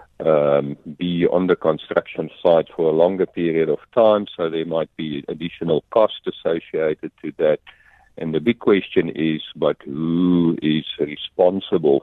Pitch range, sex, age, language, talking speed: 75-95 Hz, male, 50-69, English, 150 wpm